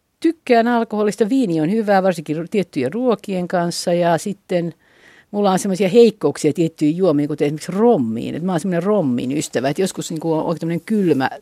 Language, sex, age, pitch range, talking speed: Finnish, female, 50-69, 150-200 Hz, 165 wpm